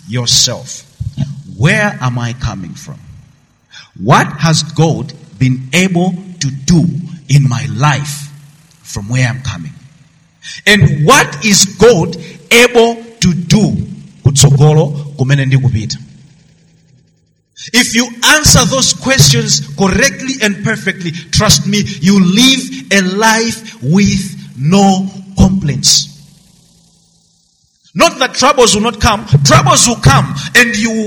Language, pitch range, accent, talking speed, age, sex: English, 145-195 Hz, South African, 110 wpm, 50-69, male